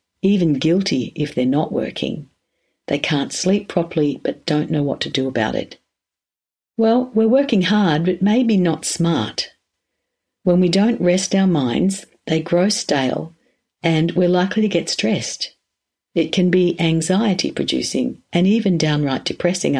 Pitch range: 150-190 Hz